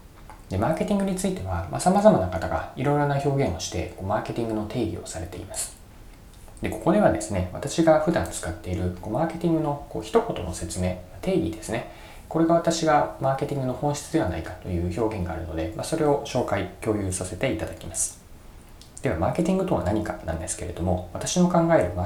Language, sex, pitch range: Japanese, male, 90-120 Hz